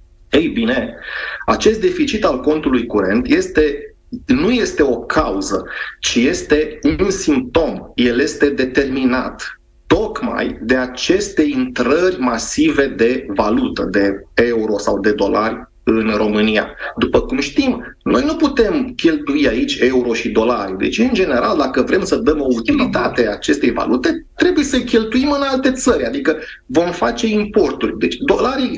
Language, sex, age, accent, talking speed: Romanian, male, 30-49, native, 140 wpm